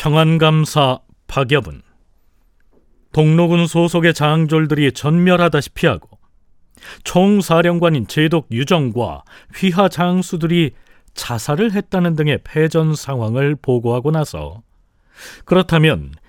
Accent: native